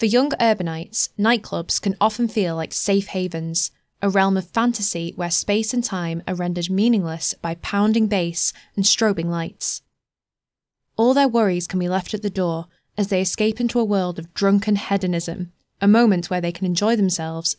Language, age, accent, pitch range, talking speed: English, 10-29, British, 170-215 Hz, 175 wpm